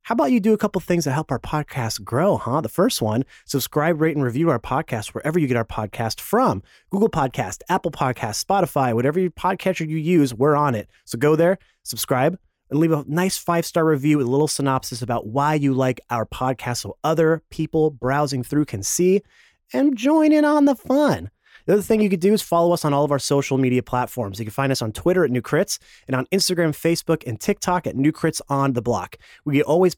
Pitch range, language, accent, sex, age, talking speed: 130-180 Hz, English, American, male, 30-49, 220 wpm